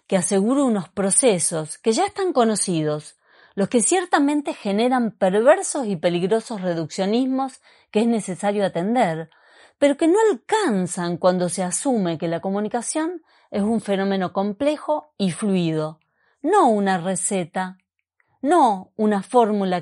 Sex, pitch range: female, 175-245 Hz